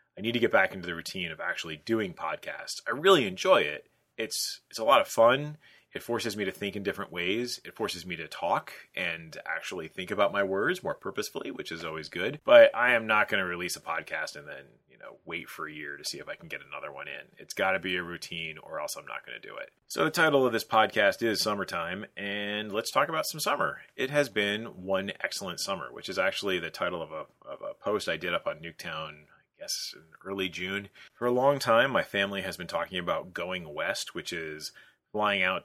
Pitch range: 90-115 Hz